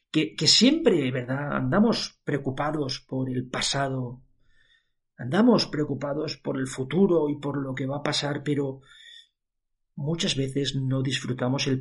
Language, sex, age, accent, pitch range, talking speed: Spanish, male, 40-59, Spanish, 130-175 Hz, 135 wpm